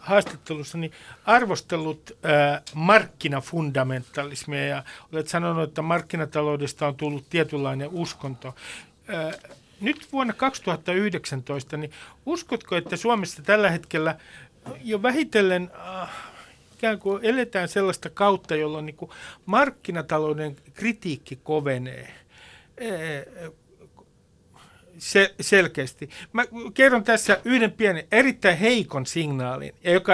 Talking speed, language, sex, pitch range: 85 wpm, Finnish, male, 145-205 Hz